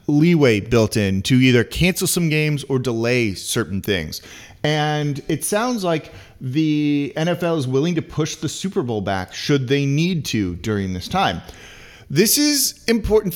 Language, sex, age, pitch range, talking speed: English, male, 30-49, 110-150 Hz, 160 wpm